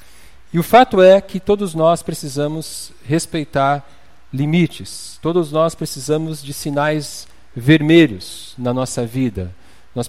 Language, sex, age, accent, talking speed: Portuguese, male, 50-69, Brazilian, 120 wpm